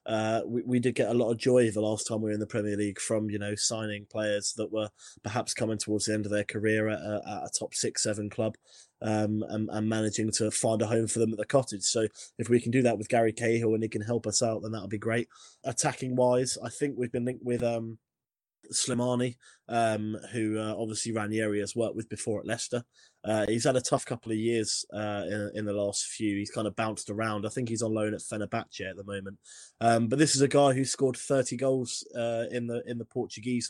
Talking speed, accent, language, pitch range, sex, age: 245 wpm, British, English, 110-125 Hz, male, 20-39